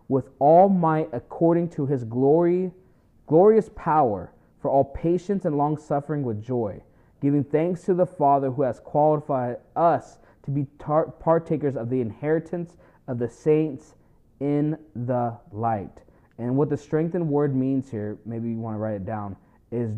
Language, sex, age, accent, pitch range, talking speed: English, male, 20-39, American, 115-145 Hz, 160 wpm